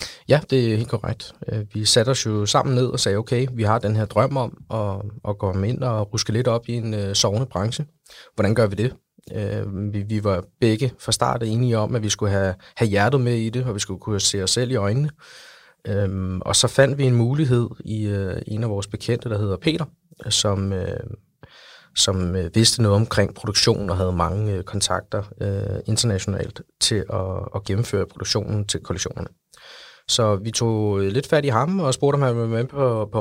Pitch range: 100-125 Hz